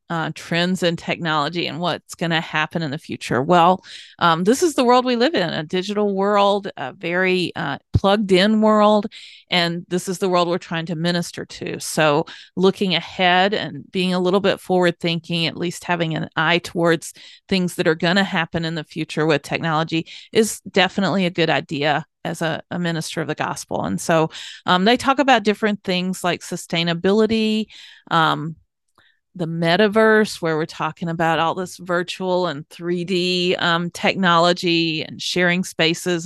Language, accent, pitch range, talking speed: English, American, 165-185 Hz, 175 wpm